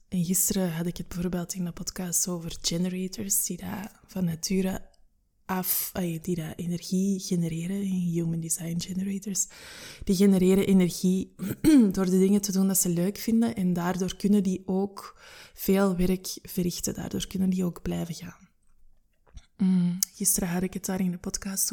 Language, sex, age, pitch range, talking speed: Dutch, female, 20-39, 175-205 Hz, 155 wpm